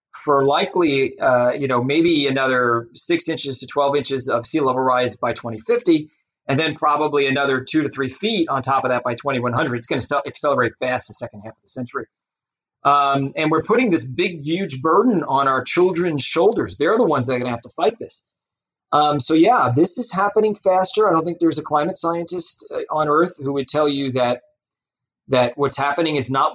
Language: English